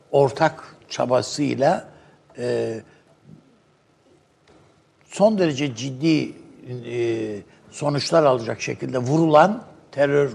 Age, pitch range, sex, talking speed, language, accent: 60-79, 130-160 Hz, male, 70 wpm, Turkish, native